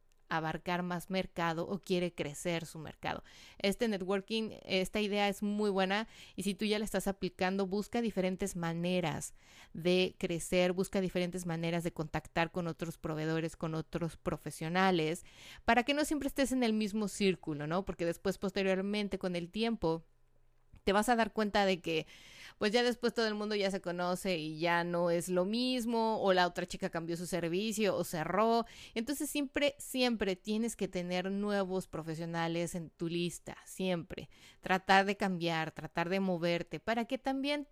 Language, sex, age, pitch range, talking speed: Spanish, female, 30-49, 170-210 Hz, 170 wpm